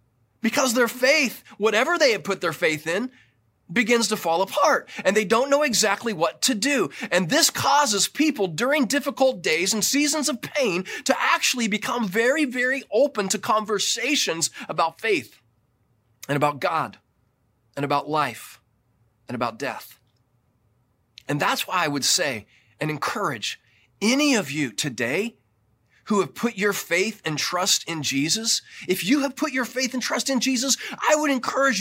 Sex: male